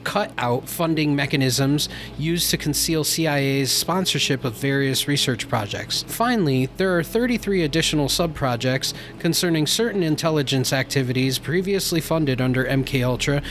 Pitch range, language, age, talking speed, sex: 130-165 Hz, English, 30-49, 120 wpm, male